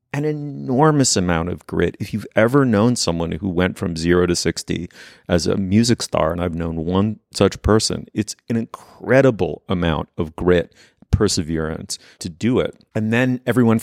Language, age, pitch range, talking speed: English, 30-49, 90-115 Hz, 170 wpm